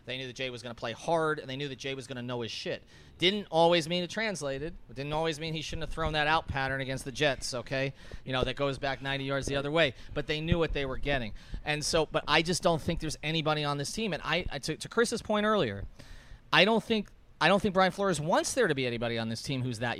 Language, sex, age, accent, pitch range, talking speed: English, male, 30-49, American, 120-160 Hz, 285 wpm